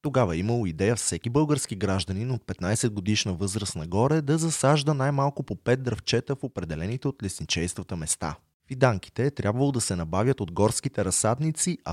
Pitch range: 95-130 Hz